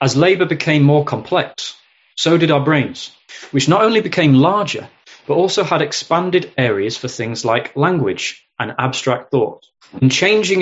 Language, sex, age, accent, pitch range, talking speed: English, male, 30-49, British, 130-160 Hz, 160 wpm